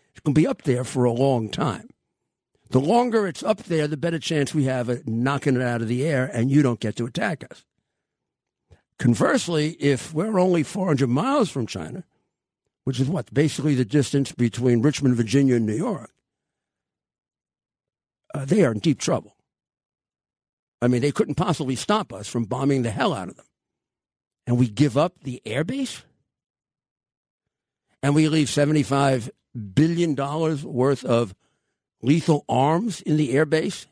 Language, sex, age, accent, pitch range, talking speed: English, male, 50-69, American, 125-160 Hz, 165 wpm